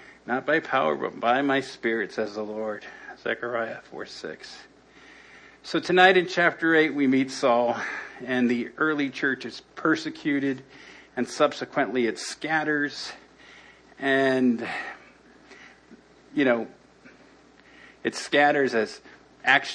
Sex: male